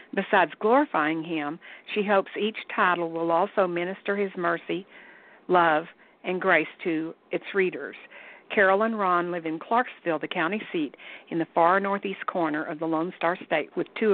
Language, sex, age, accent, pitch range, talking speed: English, female, 50-69, American, 170-210 Hz, 165 wpm